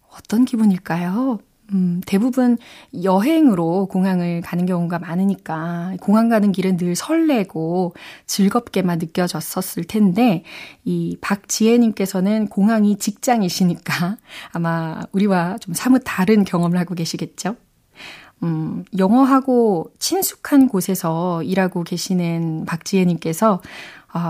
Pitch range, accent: 175-220 Hz, native